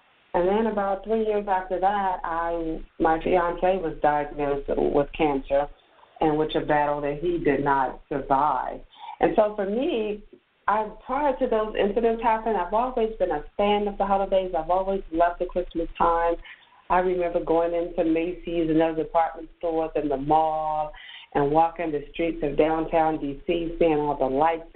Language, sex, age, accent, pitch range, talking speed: English, female, 50-69, American, 150-190 Hz, 170 wpm